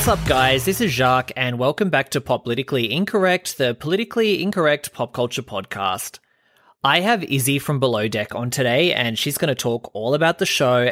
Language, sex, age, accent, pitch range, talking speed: English, male, 20-39, Australian, 110-140 Hz, 200 wpm